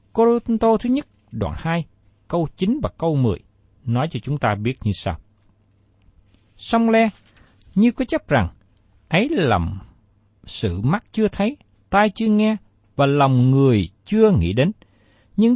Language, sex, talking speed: Vietnamese, male, 150 wpm